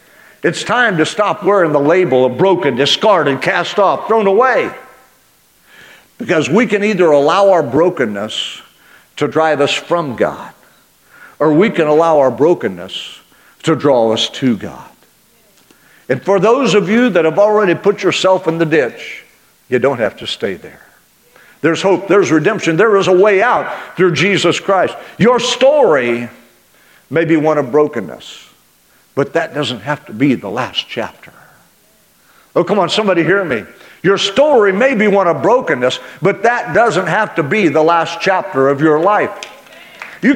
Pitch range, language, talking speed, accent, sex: 155-210 Hz, English, 165 wpm, American, male